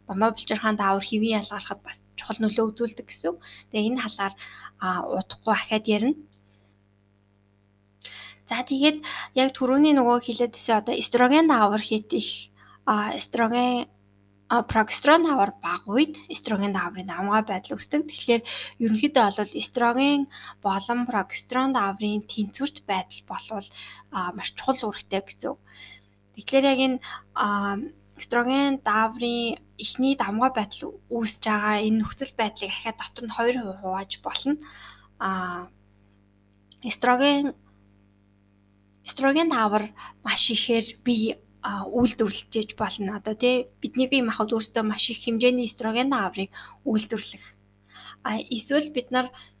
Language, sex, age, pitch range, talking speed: English, female, 20-39, 195-250 Hz, 95 wpm